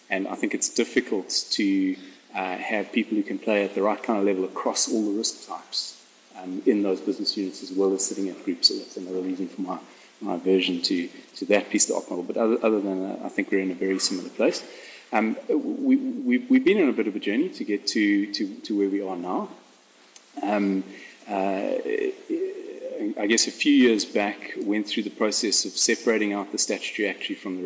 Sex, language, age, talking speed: male, English, 30-49, 220 wpm